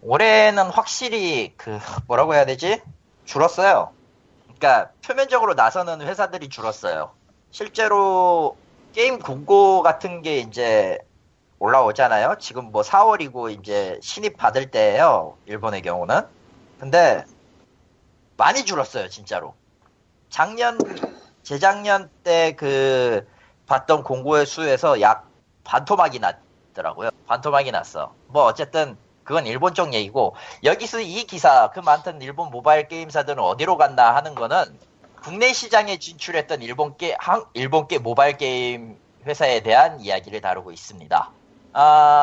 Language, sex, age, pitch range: Korean, male, 40-59, 140-200 Hz